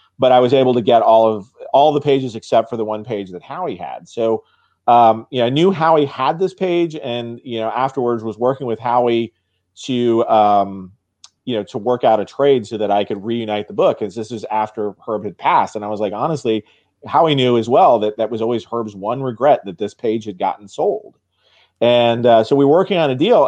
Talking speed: 235 wpm